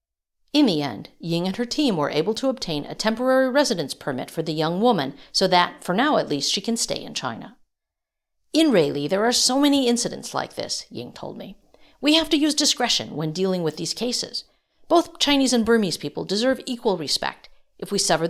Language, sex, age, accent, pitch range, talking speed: English, female, 50-69, American, 175-270 Hz, 205 wpm